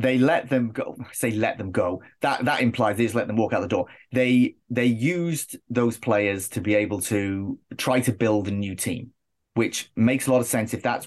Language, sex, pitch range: English, male, 105-130 Hz